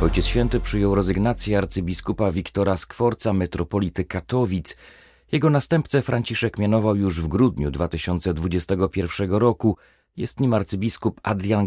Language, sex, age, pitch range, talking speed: Polish, male, 40-59, 85-110 Hz, 115 wpm